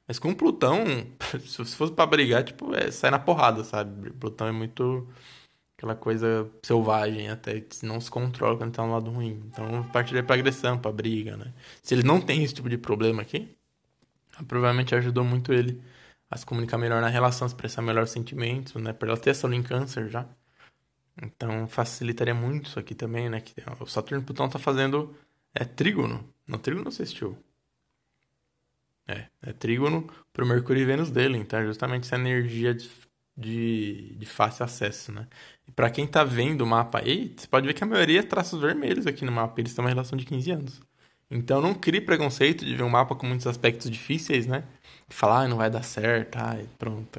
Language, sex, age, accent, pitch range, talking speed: Portuguese, male, 20-39, Brazilian, 115-135 Hz, 195 wpm